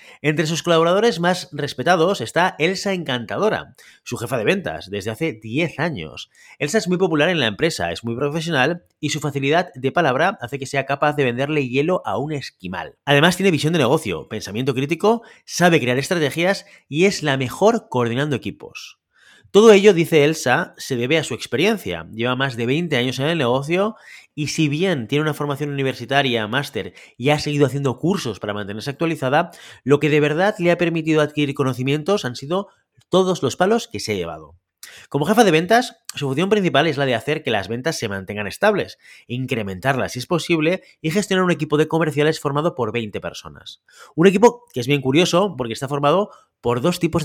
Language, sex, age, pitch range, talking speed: Spanish, male, 30-49, 130-175 Hz, 190 wpm